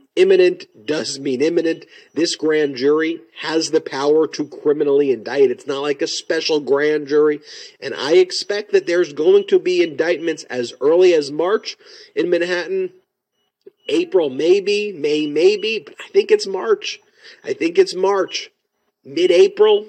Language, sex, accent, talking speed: English, male, American, 150 wpm